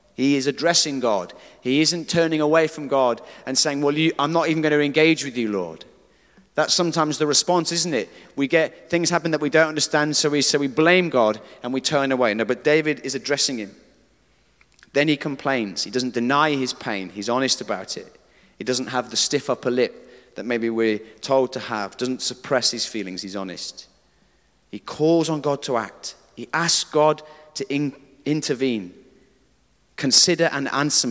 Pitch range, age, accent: 120-155 Hz, 30-49, British